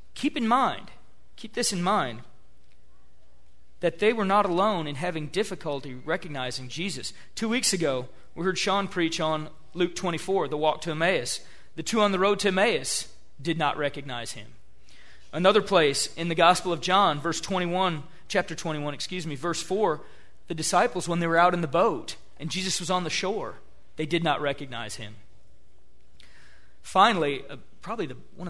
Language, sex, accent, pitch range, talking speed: English, male, American, 135-190 Hz, 175 wpm